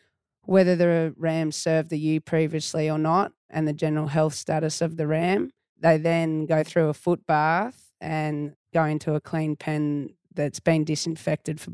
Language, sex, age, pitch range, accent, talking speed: English, female, 20-39, 155-170 Hz, Australian, 175 wpm